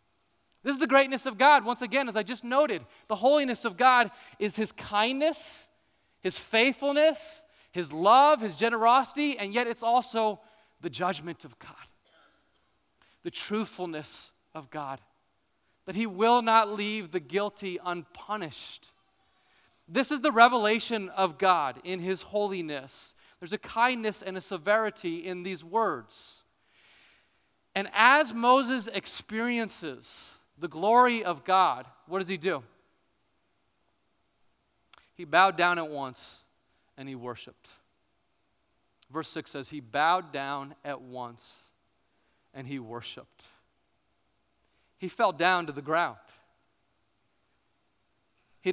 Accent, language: American, English